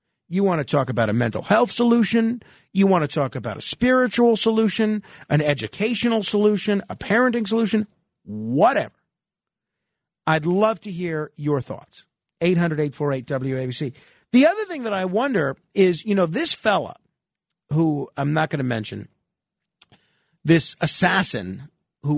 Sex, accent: male, American